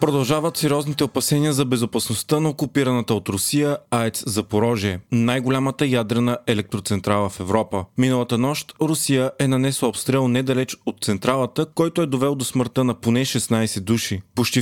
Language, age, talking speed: Bulgarian, 30-49, 145 wpm